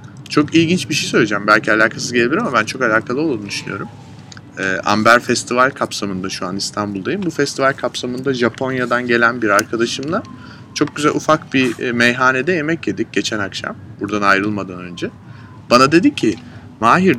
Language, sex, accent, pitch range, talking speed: Turkish, male, native, 110-145 Hz, 145 wpm